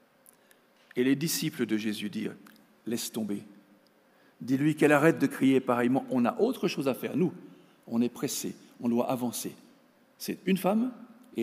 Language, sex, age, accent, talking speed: French, male, 60-79, French, 165 wpm